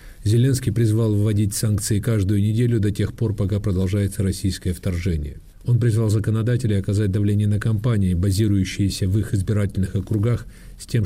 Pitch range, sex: 95-115 Hz, male